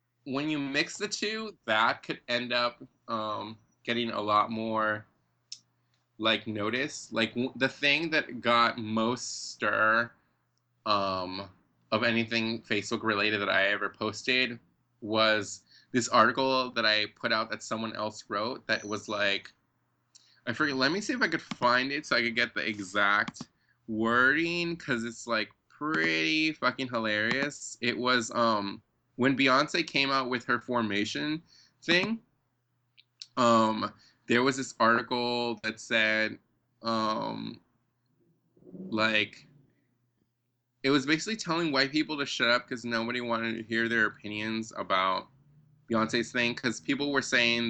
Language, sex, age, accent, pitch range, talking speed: English, male, 20-39, American, 110-130 Hz, 140 wpm